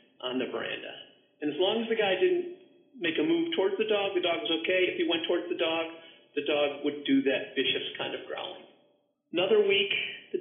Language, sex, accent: English, male, American